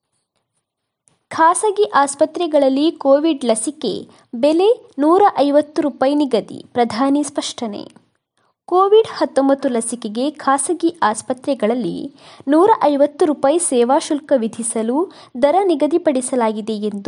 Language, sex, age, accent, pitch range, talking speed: Kannada, female, 20-39, native, 240-325 Hz, 80 wpm